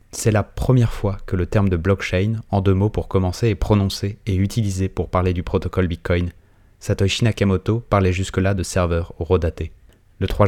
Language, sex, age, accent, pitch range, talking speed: English, male, 20-39, French, 95-105 Hz, 185 wpm